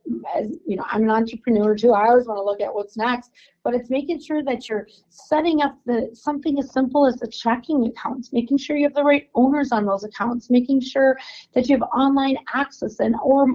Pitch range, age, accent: 215-265 Hz, 40-59, American